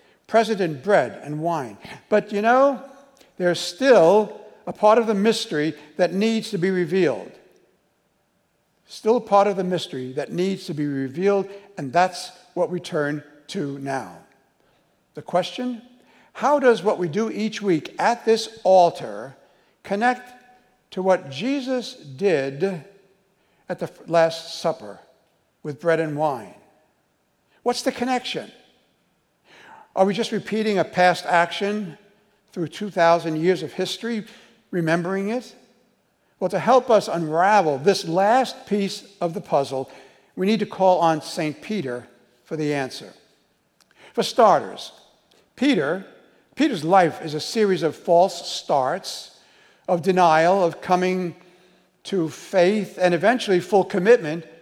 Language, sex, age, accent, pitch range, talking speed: English, male, 60-79, American, 165-215 Hz, 135 wpm